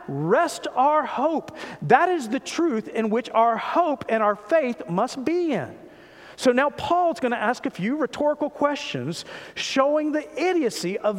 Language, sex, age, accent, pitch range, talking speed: English, male, 50-69, American, 235-330 Hz, 165 wpm